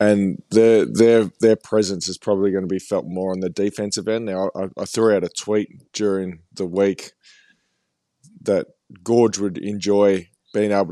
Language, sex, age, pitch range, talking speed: English, male, 20-39, 95-110 Hz, 175 wpm